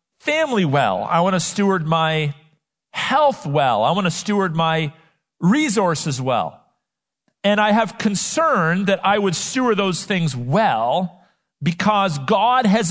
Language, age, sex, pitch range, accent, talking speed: English, 50-69, male, 165-220 Hz, American, 140 wpm